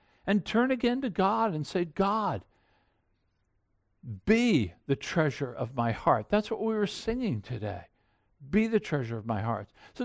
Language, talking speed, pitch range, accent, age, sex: English, 160 wpm, 155-240 Hz, American, 60-79, male